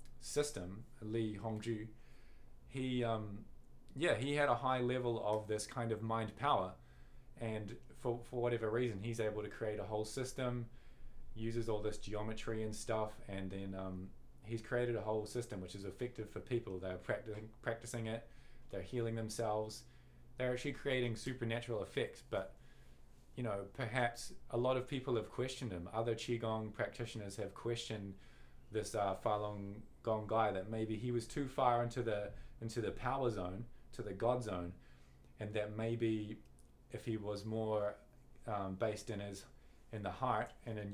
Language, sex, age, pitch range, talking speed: English, male, 20-39, 105-120 Hz, 165 wpm